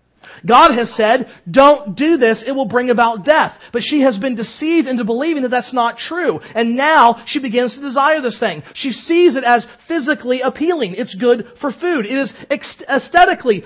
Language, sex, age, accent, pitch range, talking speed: English, male, 40-59, American, 155-250 Hz, 190 wpm